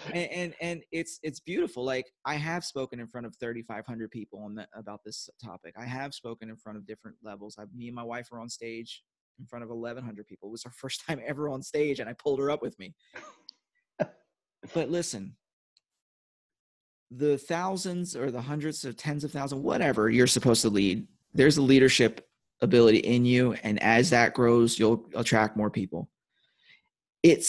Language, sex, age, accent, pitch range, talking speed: English, male, 30-49, American, 115-140 Hz, 190 wpm